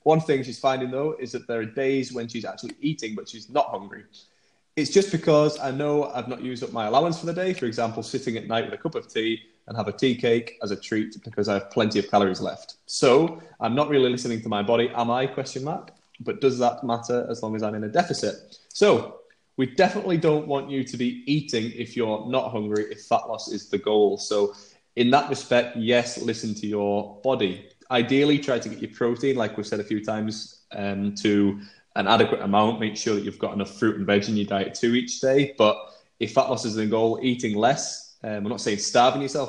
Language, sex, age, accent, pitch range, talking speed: English, male, 20-39, British, 105-130 Hz, 235 wpm